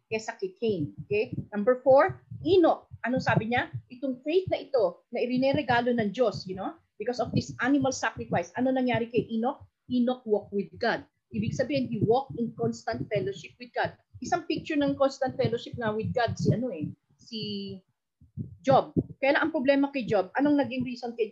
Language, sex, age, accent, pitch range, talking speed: Filipino, female, 30-49, native, 200-260 Hz, 185 wpm